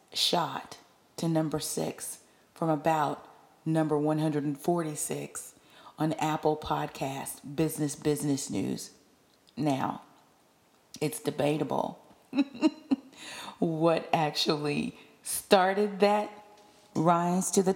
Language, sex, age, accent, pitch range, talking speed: English, female, 40-59, American, 145-185 Hz, 80 wpm